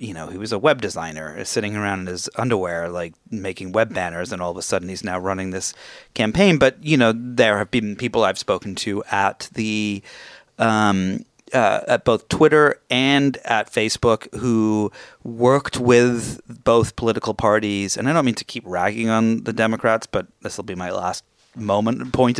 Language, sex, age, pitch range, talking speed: English, male, 30-49, 100-130 Hz, 190 wpm